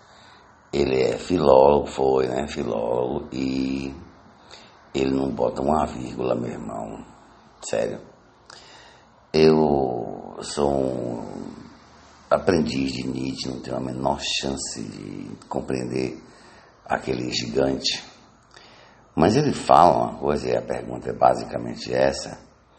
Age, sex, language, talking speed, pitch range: 60-79, male, English, 110 wpm, 65-75 Hz